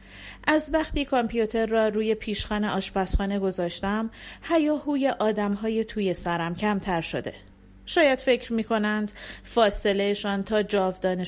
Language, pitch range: Persian, 180-230 Hz